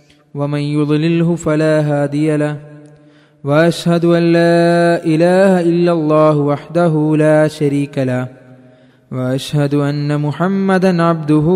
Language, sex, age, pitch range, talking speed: Malayalam, male, 20-39, 155-200 Hz, 100 wpm